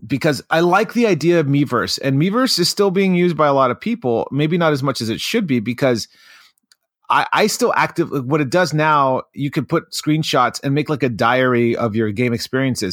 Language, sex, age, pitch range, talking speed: English, male, 30-49, 110-145 Hz, 225 wpm